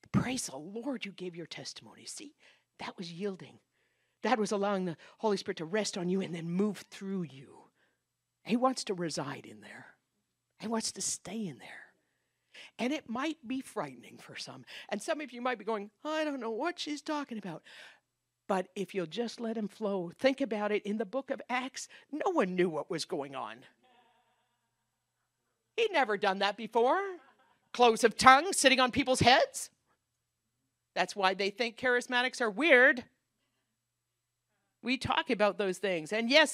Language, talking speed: English, 175 wpm